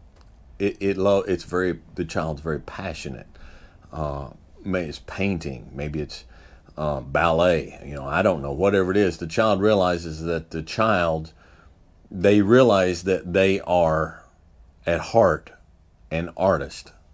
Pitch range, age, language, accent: 80-100 Hz, 50-69, English, American